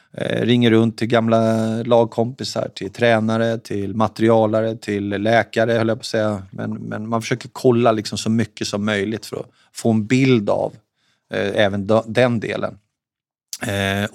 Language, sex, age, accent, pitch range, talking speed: Swedish, male, 30-49, native, 105-115 Hz, 155 wpm